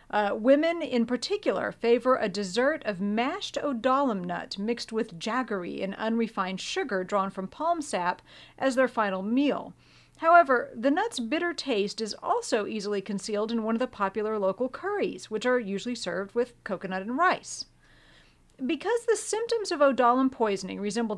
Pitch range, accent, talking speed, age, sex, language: 210-280 Hz, American, 160 wpm, 40-59, female, English